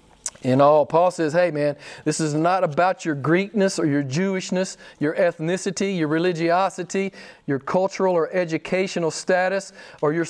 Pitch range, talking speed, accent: 150-210 Hz, 150 wpm, American